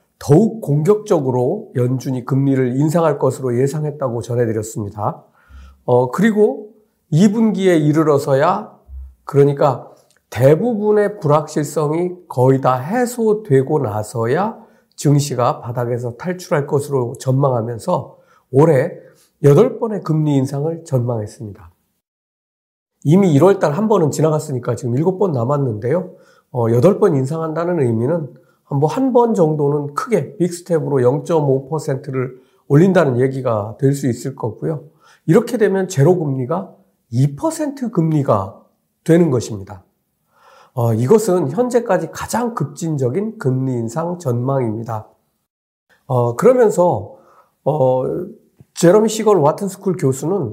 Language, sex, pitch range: Korean, male, 130-190 Hz